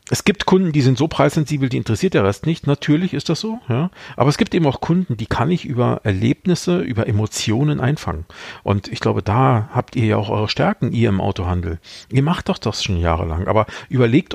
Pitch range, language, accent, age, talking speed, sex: 105-145 Hz, German, German, 50-69, 215 wpm, male